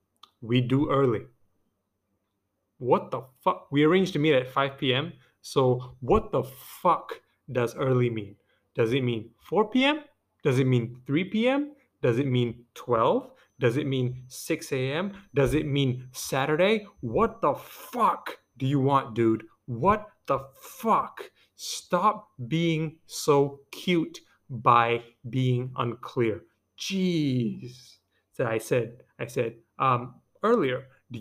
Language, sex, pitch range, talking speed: English, male, 120-160 Hz, 135 wpm